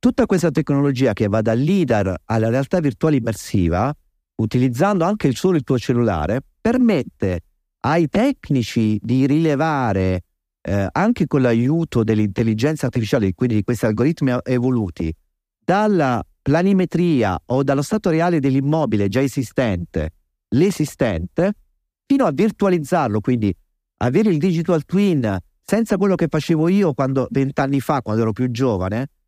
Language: Italian